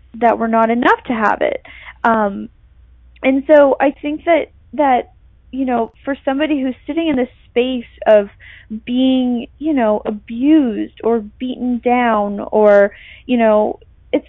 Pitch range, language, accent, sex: 220-285 Hz, English, American, female